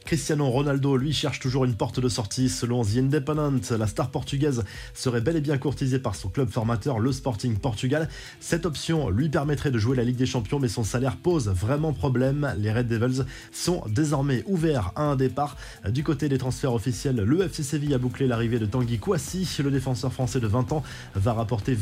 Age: 20-39